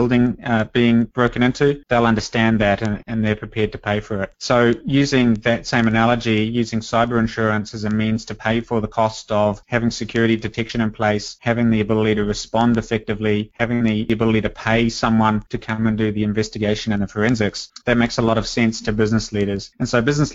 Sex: male